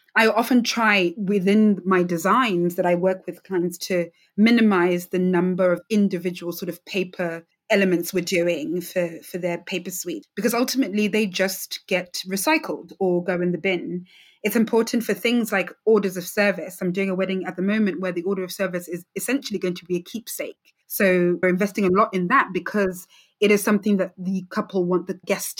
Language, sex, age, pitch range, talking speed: English, female, 20-39, 180-215 Hz, 195 wpm